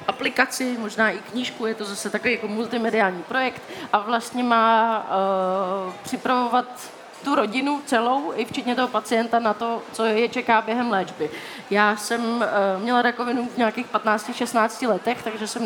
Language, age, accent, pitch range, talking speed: Czech, 20-39, native, 215-240 Hz, 155 wpm